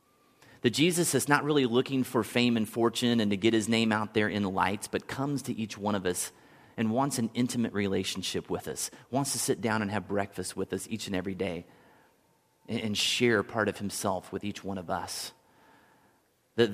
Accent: American